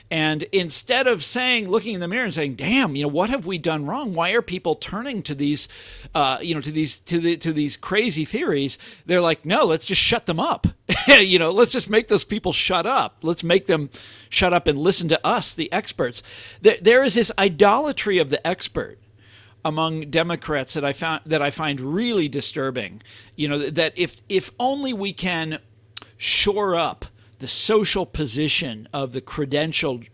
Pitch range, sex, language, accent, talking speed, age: 140-205 Hz, male, English, American, 190 wpm, 50-69